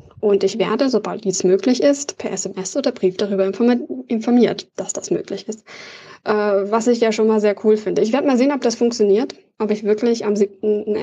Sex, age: female, 20-39